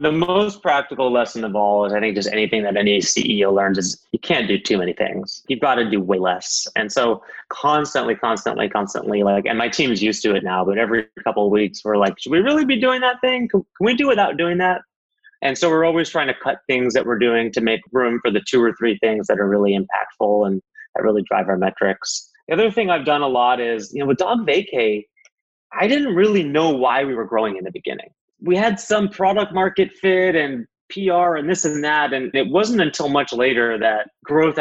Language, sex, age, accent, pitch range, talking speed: English, male, 30-49, American, 110-170 Hz, 235 wpm